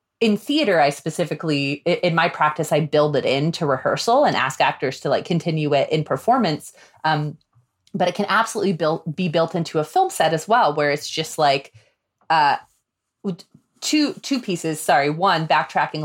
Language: English